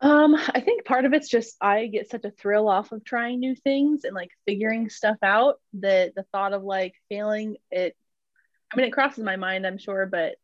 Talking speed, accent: 220 wpm, American